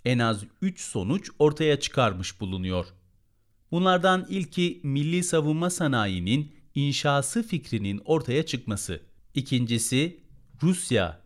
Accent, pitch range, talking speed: native, 105-140 Hz, 95 wpm